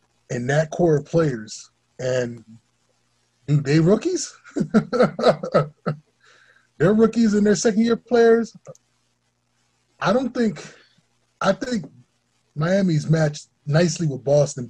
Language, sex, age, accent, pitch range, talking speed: English, male, 10-29, American, 125-165 Hz, 100 wpm